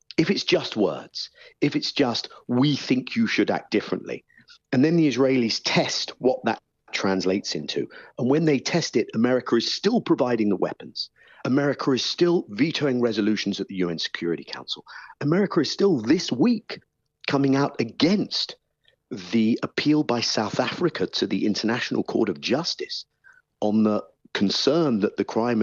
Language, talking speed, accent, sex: English, 160 wpm, British, male